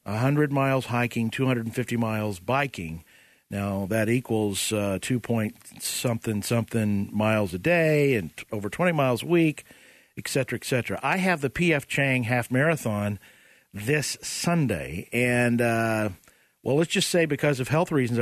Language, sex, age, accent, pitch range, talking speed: English, male, 50-69, American, 115-150 Hz, 150 wpm